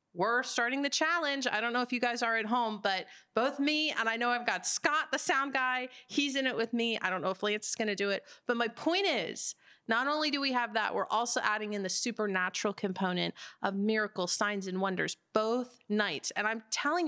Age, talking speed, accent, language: 30-49, 230 wpm, American, English